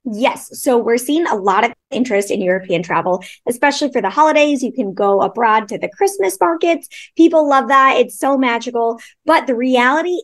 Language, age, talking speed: English, 20-39, 190 wpm